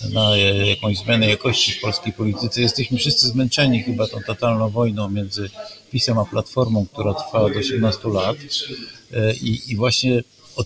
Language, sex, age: Polish, male, 50-69